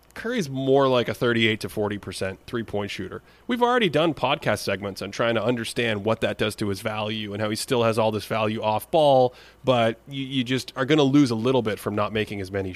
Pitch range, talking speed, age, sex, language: 105-145 Hz, 235 wpm, 30-49, male, English